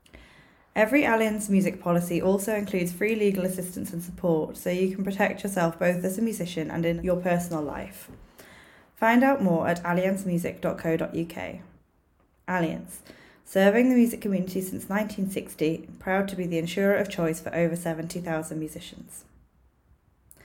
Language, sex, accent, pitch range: English, female, British, 165-195 Hz